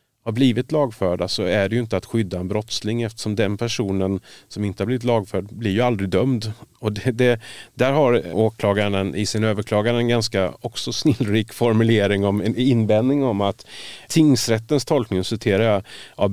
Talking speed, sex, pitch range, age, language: 175 wpm, male, 100-120 Hz, 30-49, Swedish